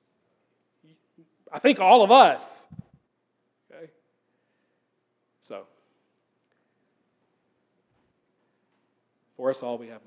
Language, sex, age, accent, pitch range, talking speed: English, male, 40-59, American, 150-210 Hz, 70 wpm